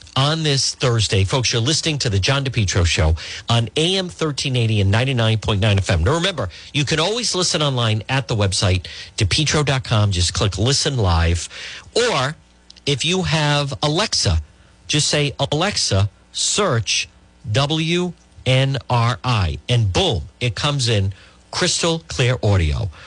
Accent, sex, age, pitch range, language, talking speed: American, male, 50-69, 100-160 Hz, English, 130 wpm